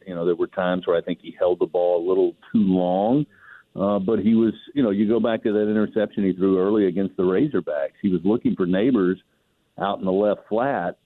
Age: 50-69